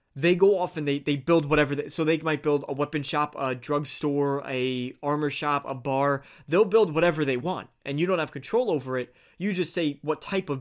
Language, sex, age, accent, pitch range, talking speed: English, male, 20-39, American, 130-155 Hz, 225 wpm